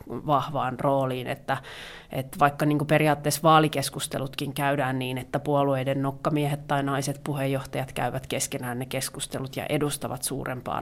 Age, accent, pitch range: 30-49, native, 140-155 Hz